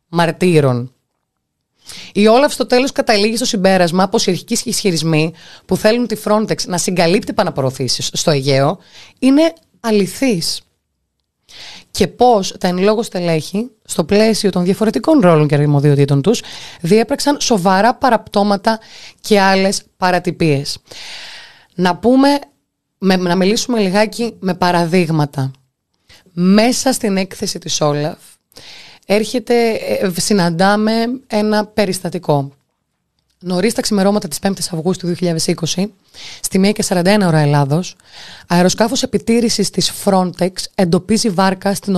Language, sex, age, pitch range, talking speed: Greek, female, 20-39, 170-220 Hz, 110 wpm